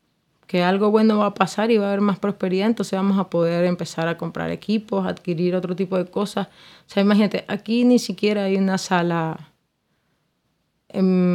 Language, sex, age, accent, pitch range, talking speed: Spanish, female, 20-39, Spanish, 180-220 Hz, 185 wpm